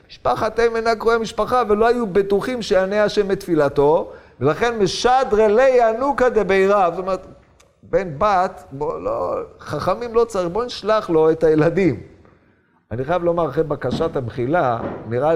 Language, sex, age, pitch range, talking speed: Hebrew, male, 50-69, 120-185 Hz, 145 wpm